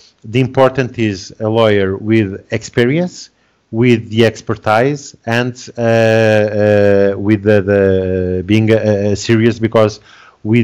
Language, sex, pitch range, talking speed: English, male, 105-120 Hz, 115 wpm